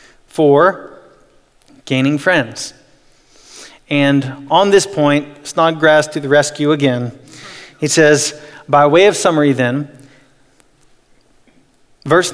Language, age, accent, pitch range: English, 40-59, American, 140-180 Hz